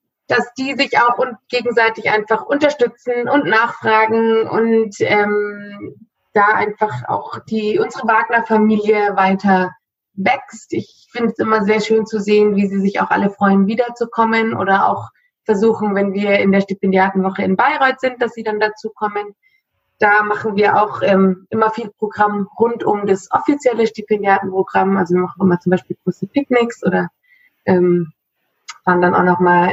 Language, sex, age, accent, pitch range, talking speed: German, female, 20-39, German, 205-245 Hz, 155 wpm